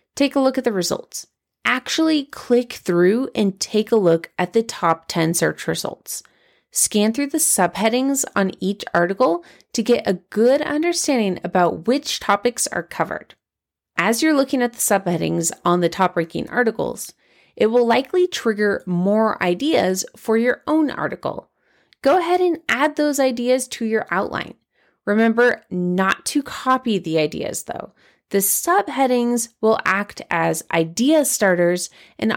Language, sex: English, female